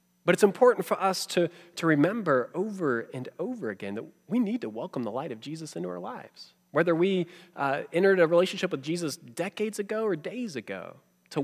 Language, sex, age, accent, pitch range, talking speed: English, male, 30-49, American, 130-175 Hz, 200 wpm